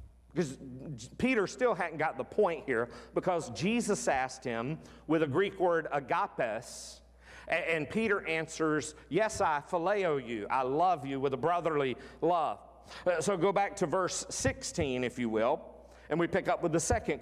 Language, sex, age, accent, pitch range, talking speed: English, male, 50-69, American, 130-205 Hz, 165 wpm